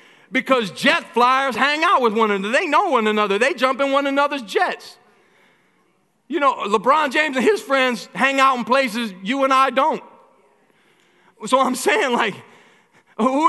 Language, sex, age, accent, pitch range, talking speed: English, male, 40-59, American, 225-275 Hz, 170 wpm